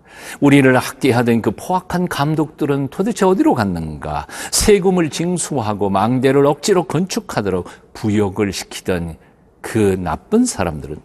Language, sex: Korean, male